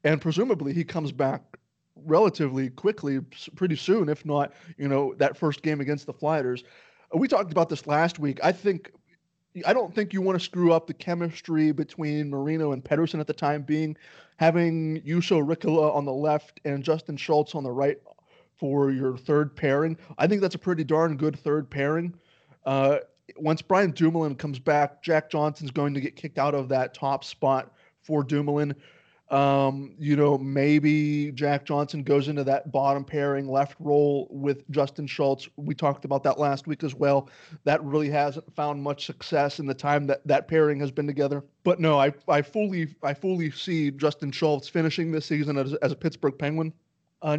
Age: 30-49